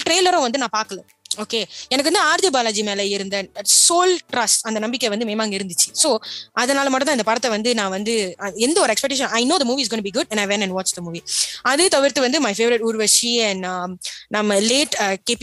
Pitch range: 205-265 Hz